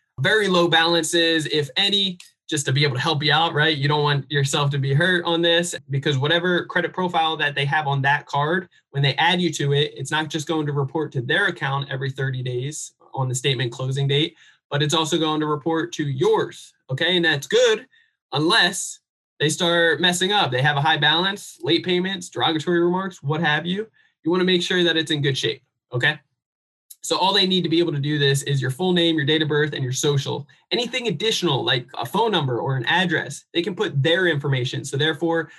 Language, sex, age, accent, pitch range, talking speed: English, male, 20-39, American, 145-180 Hz, 225 wpm